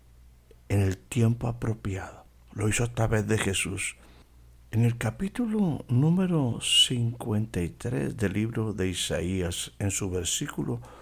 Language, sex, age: Spanish, male, 60-79